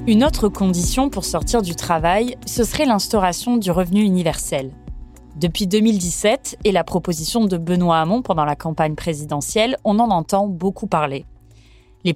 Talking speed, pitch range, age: 155 wpm, 165-225 Hz, 20-39